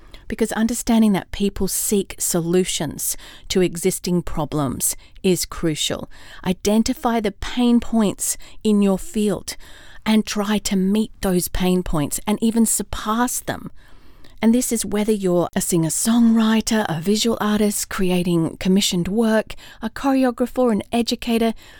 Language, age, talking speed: English, 40-59, 125 wpm